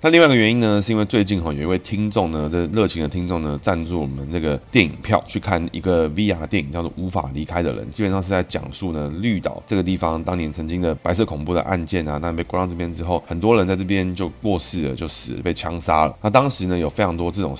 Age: 20-39